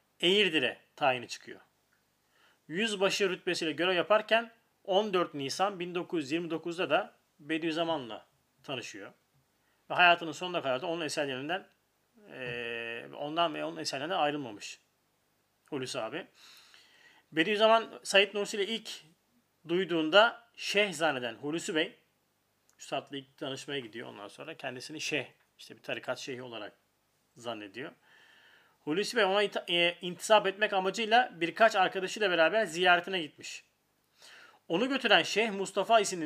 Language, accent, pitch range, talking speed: Turkish, native, 155-205 Hz, 115 wpm